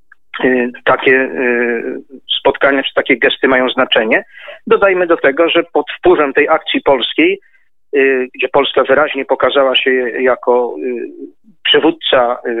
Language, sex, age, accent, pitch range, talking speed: Polish, male, 40-59, native, 125-140 Hz, 110 wpm